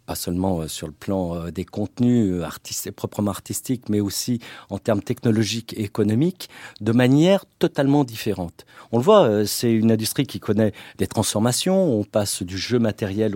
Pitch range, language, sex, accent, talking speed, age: 100-135 Hz, French, male, French, 160 wpm, 50-69